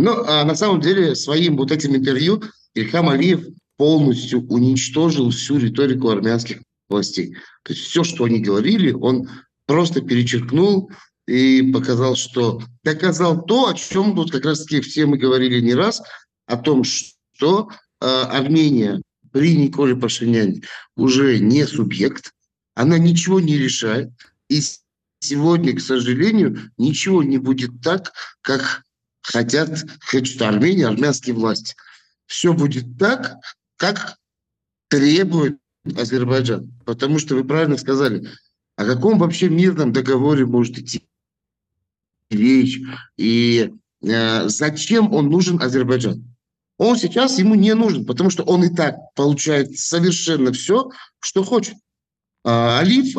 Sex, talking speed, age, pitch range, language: male, 120 wpm, 50-69, 125-175 Hz, Russian